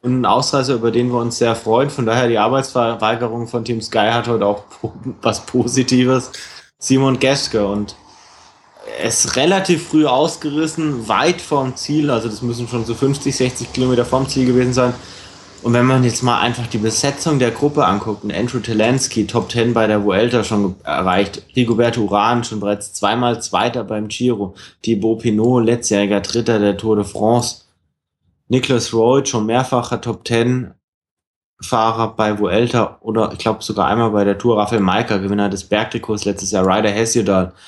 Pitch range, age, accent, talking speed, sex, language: 110-130 Hz, 20-39, German, 165 wpm, male, German